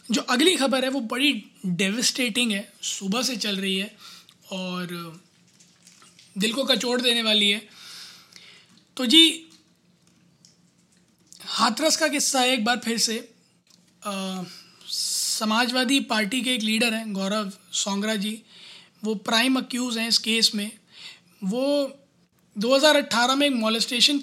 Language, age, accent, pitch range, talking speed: Hindi, 20-39, native, 195-250 Hz, 125 wpm